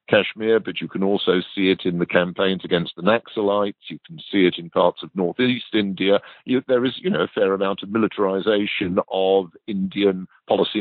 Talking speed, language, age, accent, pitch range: 190 wpm, English, 50-69, British, 95-120 Hz